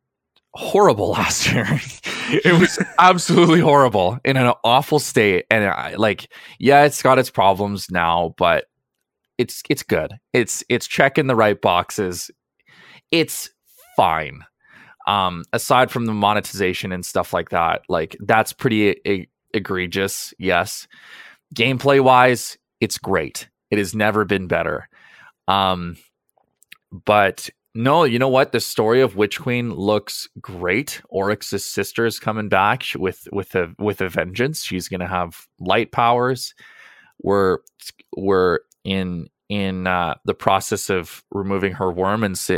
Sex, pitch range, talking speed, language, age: male, 95-130 Hz, 140 wpm, English, 20-39